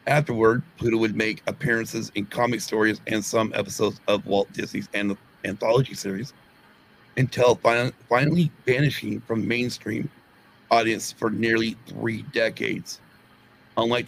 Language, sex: English, male